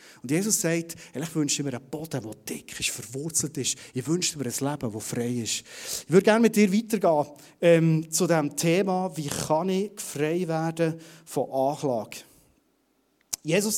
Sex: male